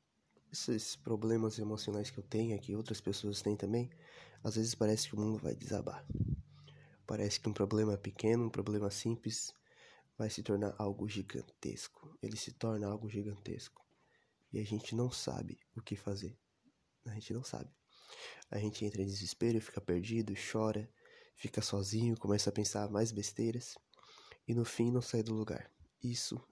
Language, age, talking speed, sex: Portuguese, 20-39, 165 wpm, male